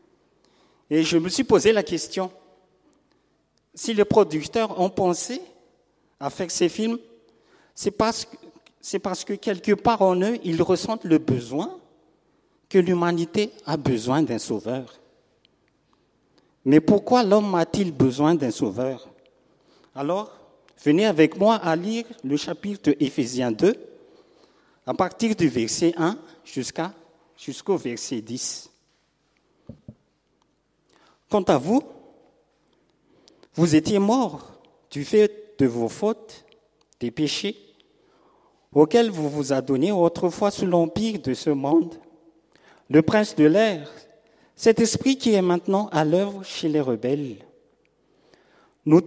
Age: 50-69